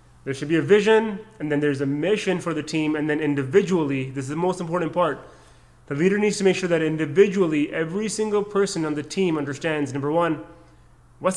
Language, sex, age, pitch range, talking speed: English, male, 30-49, 145-185 Hz, 210 wpm